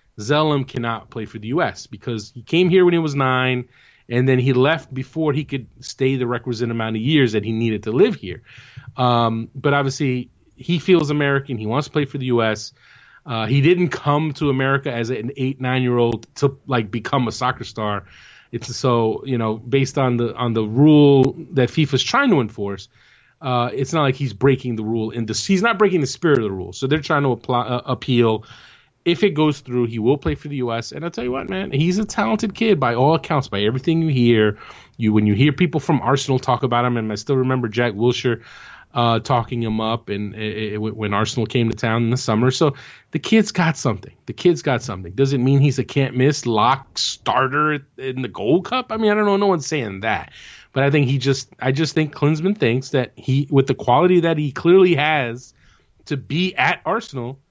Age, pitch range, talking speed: 30-49, 115-150 Hz, 225 wpm